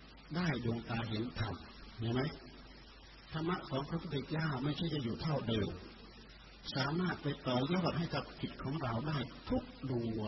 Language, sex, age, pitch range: Thai, male, 60-79, 115-140 Hz